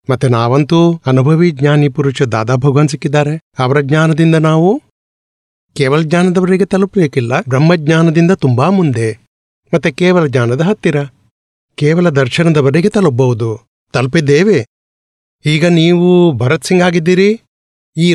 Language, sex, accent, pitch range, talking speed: Gujarati, male, native, 135-175 Hz, 75 wpm